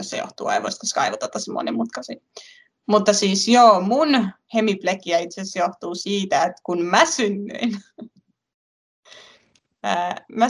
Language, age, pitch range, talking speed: Finnish, 20-39, 190-235 Hz, 115 wpm